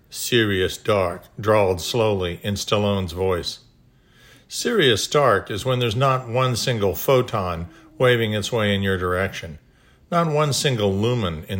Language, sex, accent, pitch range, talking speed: English, male, American, 100-130 Hz, 140 wpm